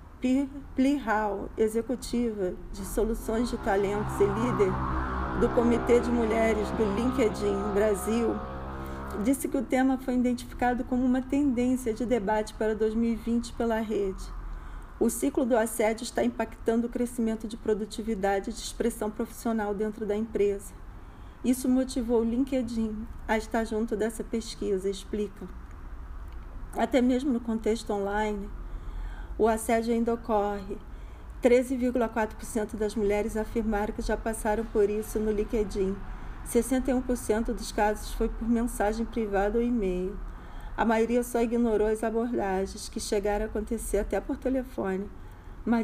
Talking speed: 130 wpm